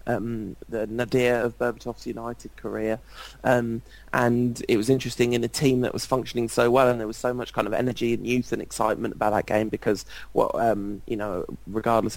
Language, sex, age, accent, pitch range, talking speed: English, male, 20-39, British, 110-120 Hz, 200 wpm